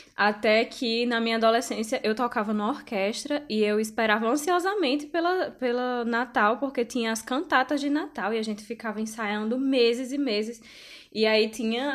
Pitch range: 210-265 Hz